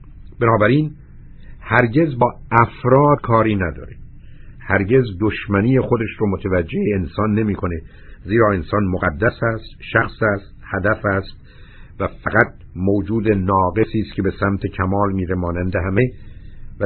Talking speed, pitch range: 120 wpm, 100-125 Hz